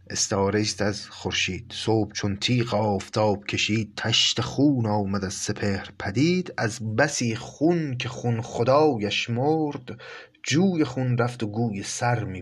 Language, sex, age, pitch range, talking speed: Persian, male, 30-49, 105-130 Hz, 135 wpm